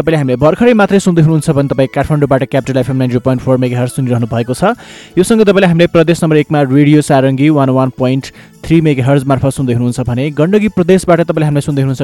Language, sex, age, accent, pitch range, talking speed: English, male, 20-39, Indian, 130-170 Hz, 145 wpm